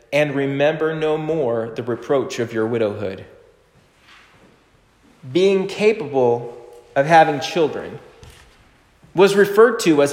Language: English